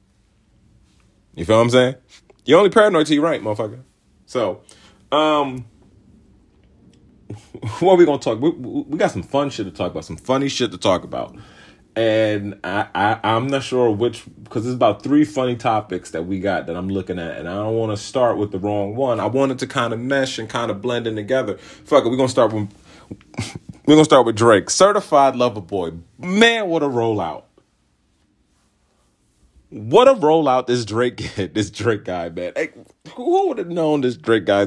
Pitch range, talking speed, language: 105-140 Hz, 195 wpm, English